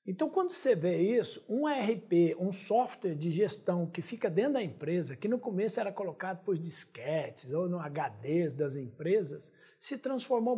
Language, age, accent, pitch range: Portuguese, 60-79, Brazilian, 170-245 Hz